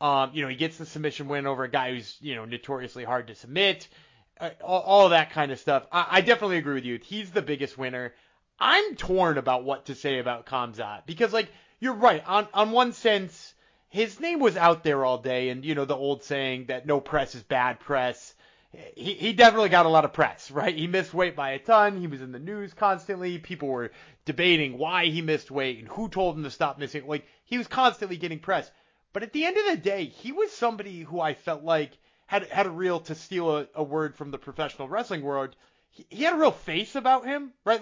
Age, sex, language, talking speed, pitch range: 30-49, male, English, 235 wpm, 140-200 Hz